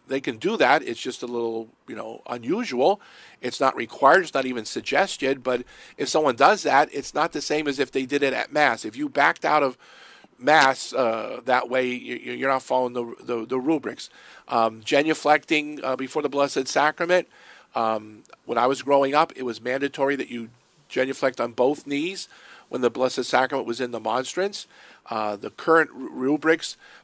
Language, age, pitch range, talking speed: English, 50-69, 115-145 Hz, 190 wpm